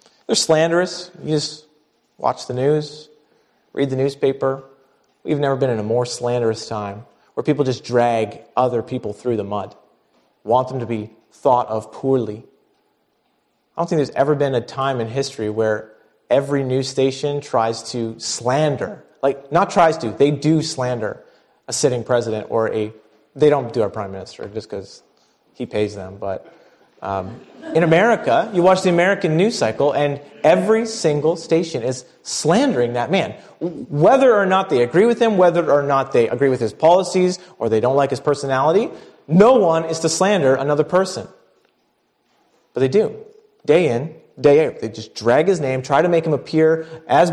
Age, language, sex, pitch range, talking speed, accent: 30-49, English, male, 120-160 Hz, 175 wpm, American